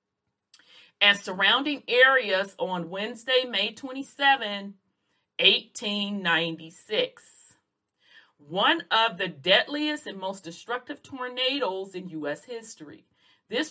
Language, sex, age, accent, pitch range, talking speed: English, female, 40-59, American, 170-240 Hz, 90 wpm